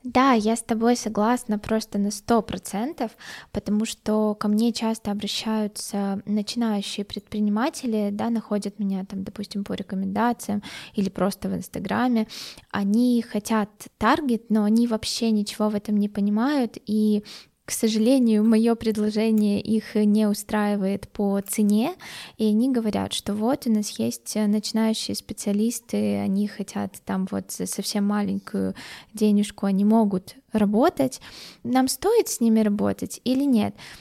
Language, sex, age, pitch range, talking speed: Russian, female, 20-39, 205-235 Hz, 135 wpm